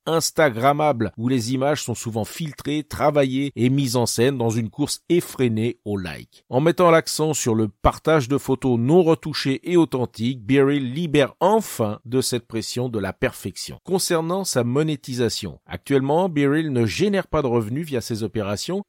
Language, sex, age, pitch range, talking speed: French, male, 50-69, 110-155 Hz, 165 wpm